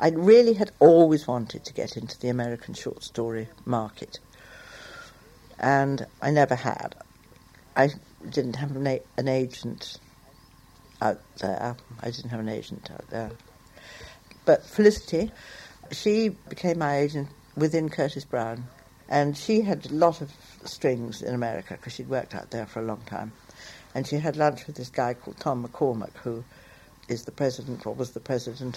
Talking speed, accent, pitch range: 155 wpm, British, 120-175 Hz